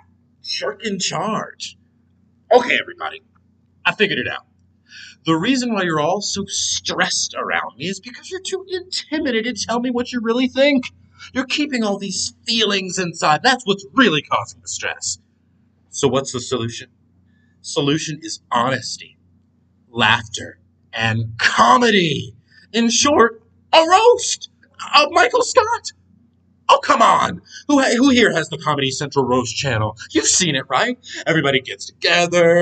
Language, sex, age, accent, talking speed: English, male, 30-49, American, 145 wpm